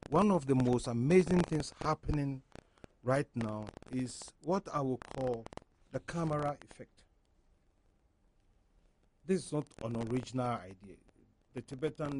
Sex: male